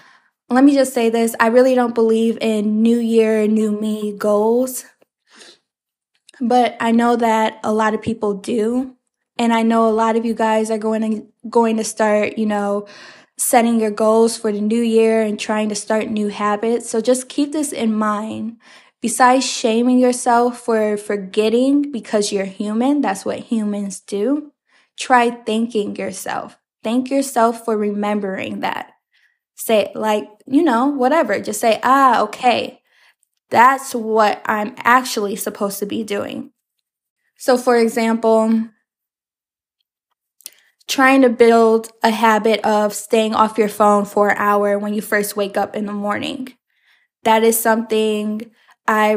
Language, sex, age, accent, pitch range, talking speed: English, female, 10-29, American, 215-245 Hz, 150 wpm